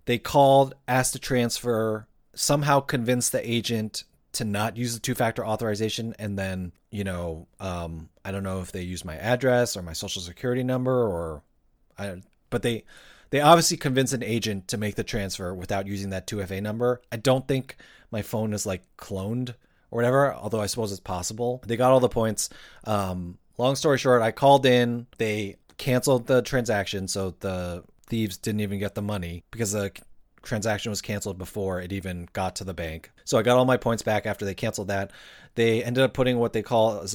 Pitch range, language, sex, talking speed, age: 100-120 Hz, English, male, 195 wpm, 30-49